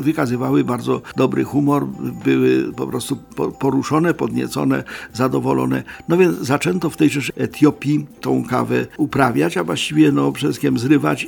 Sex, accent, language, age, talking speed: male, native, Polish, 50-69, 130 wpm